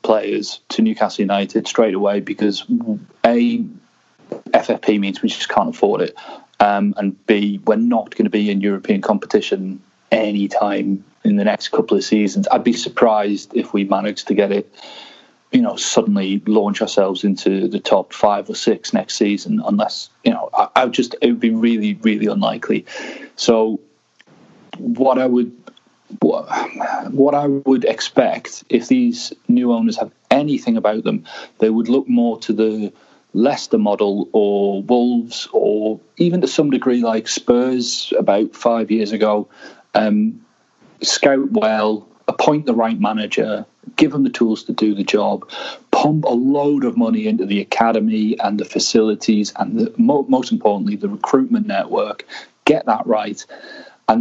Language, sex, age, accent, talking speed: English, male, 30-49, British, 155 wpm